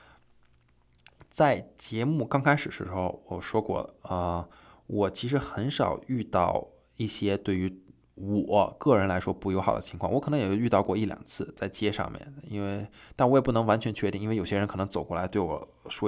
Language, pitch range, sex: Chinese, 95-115 Hz, male